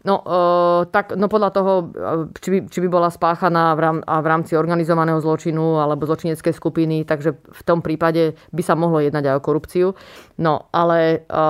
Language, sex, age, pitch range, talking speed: Slovak, female, 30-49, 165-185 Hz, 160 wpm